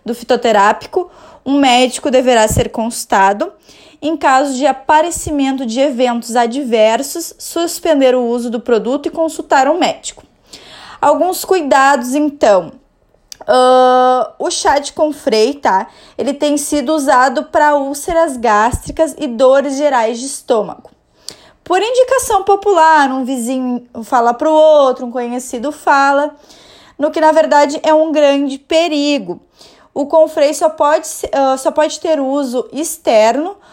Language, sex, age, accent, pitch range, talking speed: Portuguese, female, 20-39, Brazilian, 255-320 Hz, 130 wpm